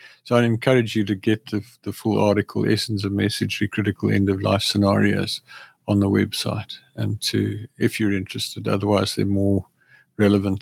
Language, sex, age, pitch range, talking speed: English, male, 50-69, 100-120 Hz, 170 wpm